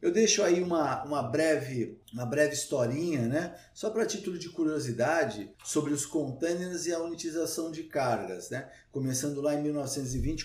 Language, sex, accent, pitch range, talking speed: Portuguese, male, Brazilian, 150-200 Hz, 160 wpm